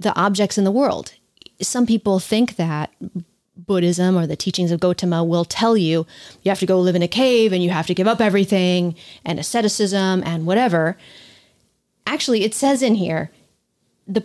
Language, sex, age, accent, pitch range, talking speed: English, female, 30-49, American, 175-215 Hz, 180 wpm